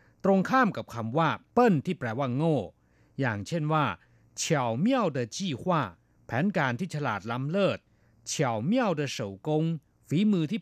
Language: Thai